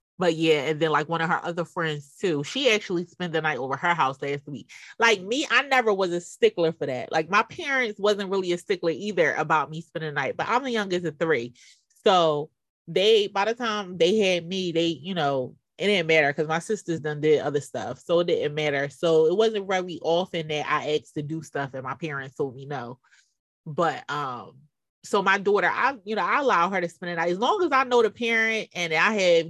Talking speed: 240 wpm